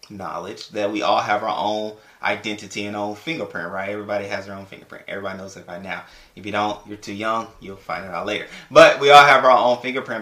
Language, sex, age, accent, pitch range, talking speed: English, male, 20-39, American, 100-110 Hz, 235 wpm